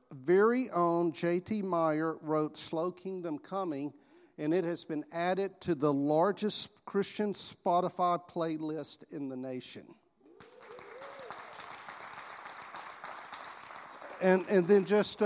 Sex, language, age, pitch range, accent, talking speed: male, English, 50-69, 145-175 Hz, American, 100 wpm